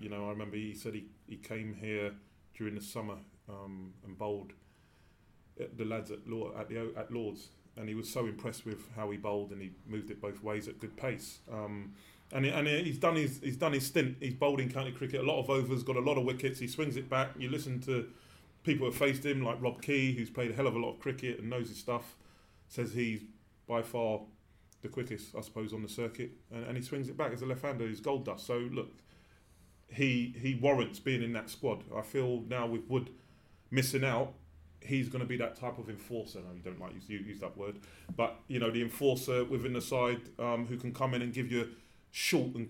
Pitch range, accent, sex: 105-125 Hz, British, male